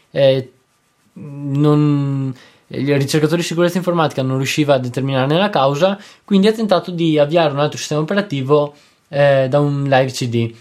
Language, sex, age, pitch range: Italian, male, 20-39, 130-170 Hz